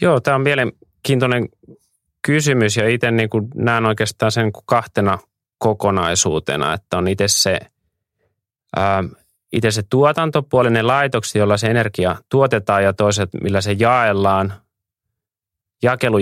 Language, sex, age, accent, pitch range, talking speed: Finnish, male, 30-49, native, 95-110 Hz, 105 wpm